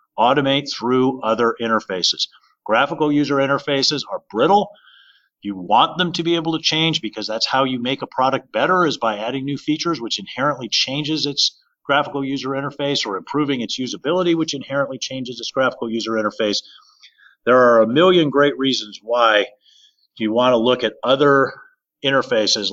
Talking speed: 165 wpm